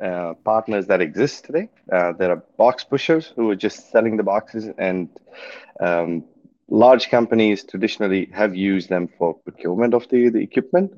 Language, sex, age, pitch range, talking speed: English, male, 30-49, 95-125 Hz, 165 wpm